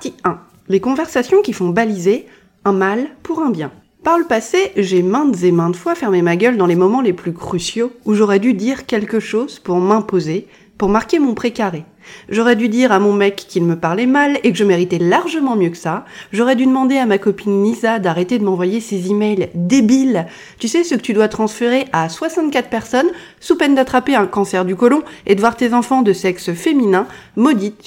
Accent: French